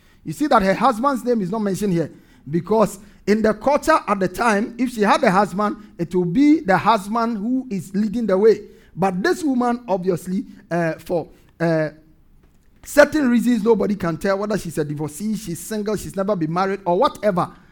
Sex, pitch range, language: male, 185-240 Hz, English